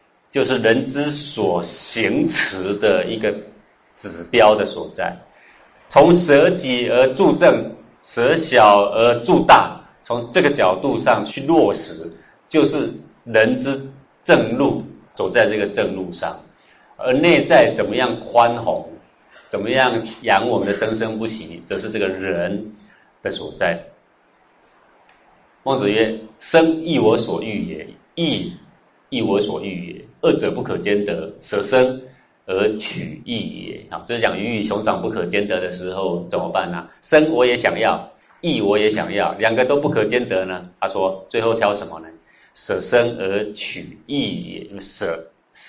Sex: male